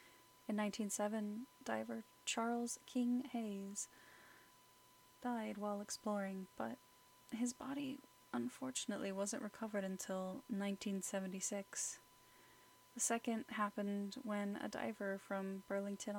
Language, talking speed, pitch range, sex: English, 95 wpm, 195-225 Hz, female